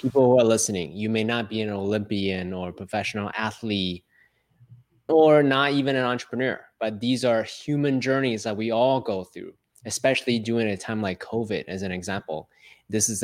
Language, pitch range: English, 100-125 Hz